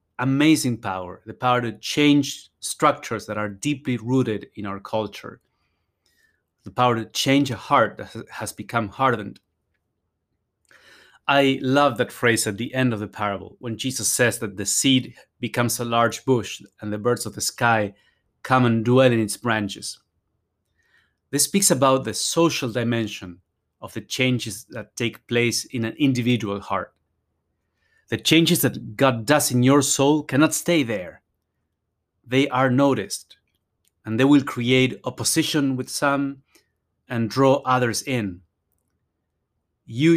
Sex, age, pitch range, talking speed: male, 30-49, 105-135 Hz, 145 wpm